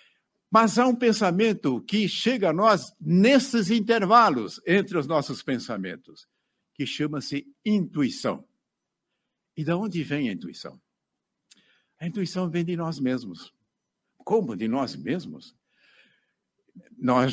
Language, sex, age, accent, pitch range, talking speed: Portuguese, male, 70-89, Brazilian, 145-210 Hz, 120 wpm